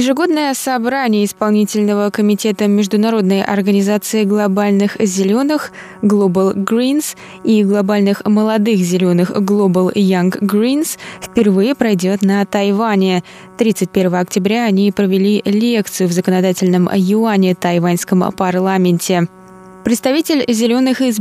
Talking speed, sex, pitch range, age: 95 wpm, female, 185-220 Hz, 20-39